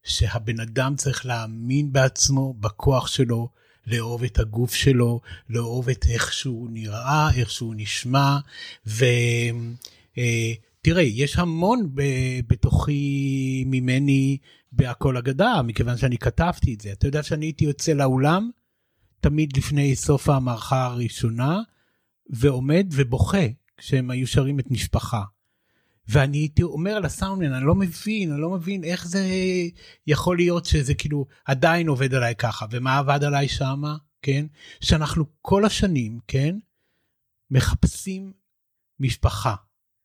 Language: Hebrew